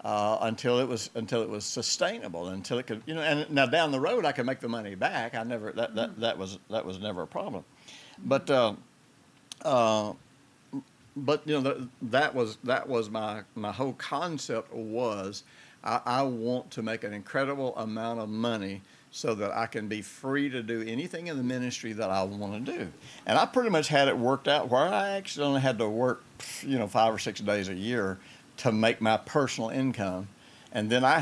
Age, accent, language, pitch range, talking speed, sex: 60-79, American, English, 110-140 Hz, 210 wpm, male